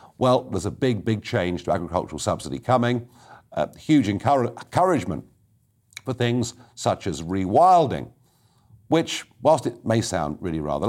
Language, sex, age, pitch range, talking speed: English, male, 50-69, 90-130 Hz, 145 wpm